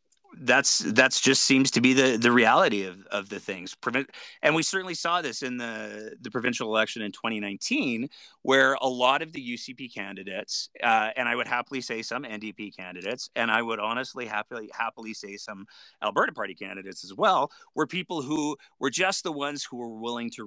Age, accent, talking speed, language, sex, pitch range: 30-49, American, 195 wpm, English, male, 110-155 Hz